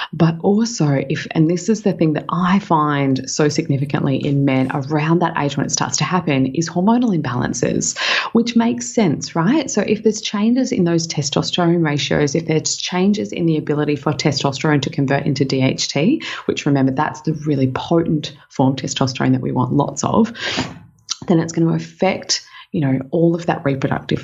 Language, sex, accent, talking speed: English, female, Australian, 185 wpm